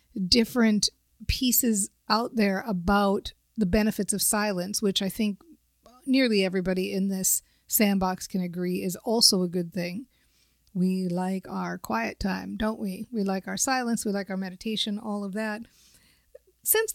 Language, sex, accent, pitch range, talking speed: English, female, American, 190-225 Hz, 150 wpm